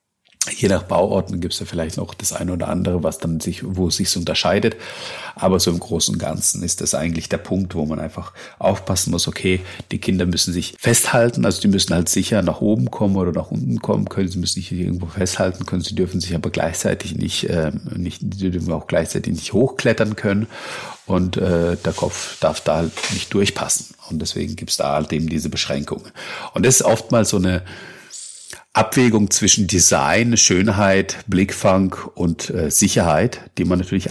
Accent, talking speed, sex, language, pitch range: German, 190 wpm, male, German, 90-110 Hz